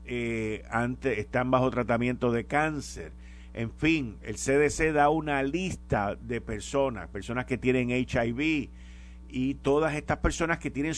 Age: 50-69